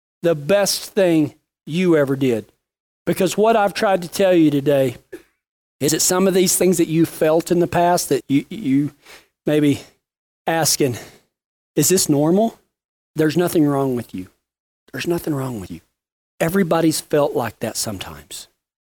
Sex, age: male, 40-59